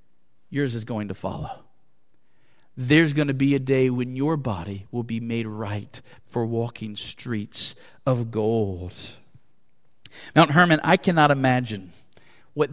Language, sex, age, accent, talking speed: English, male, 40-59, American, 135 wpm